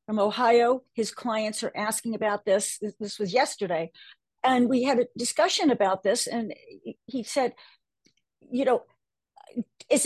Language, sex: English, female